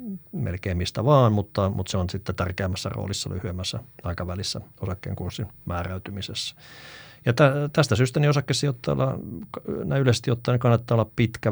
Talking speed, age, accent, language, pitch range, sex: 140 wpm, 50-69, native, Finnish, 95-120 Hz, male